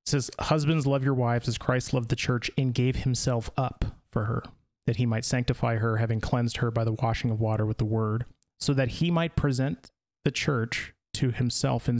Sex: male